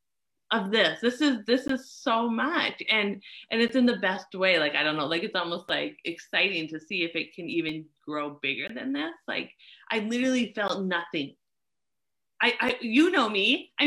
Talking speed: 195 wpm